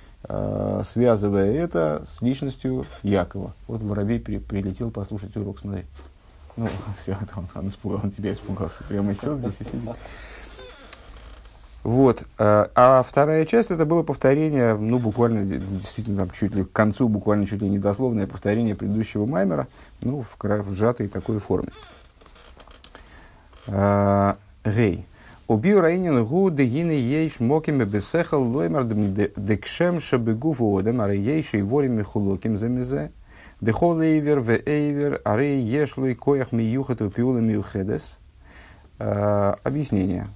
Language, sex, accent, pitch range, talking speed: Russian, male, native, 100-125 Hz, 85 wpm